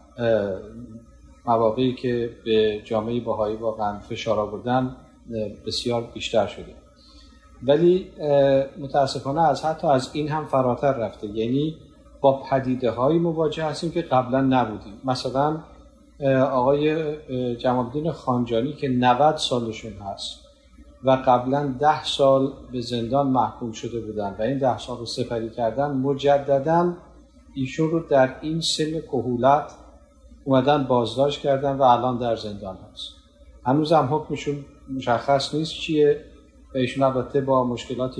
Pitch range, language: 120-145 Hz, Persian